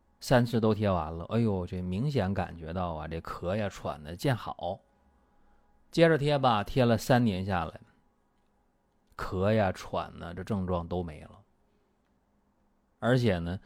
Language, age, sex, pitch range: Chinese, 30-49, male, 95-145 Hz